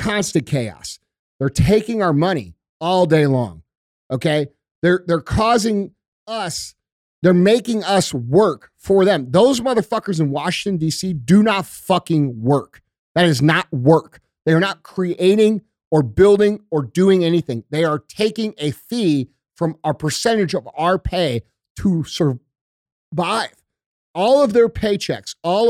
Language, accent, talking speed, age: English, American, 140 wpm, 50-69